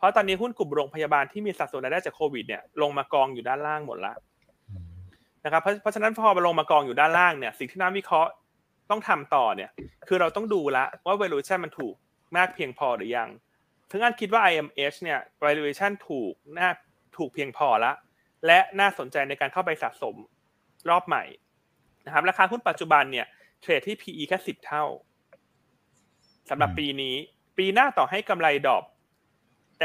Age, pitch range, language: 20-39, 145-205 Hz, Thai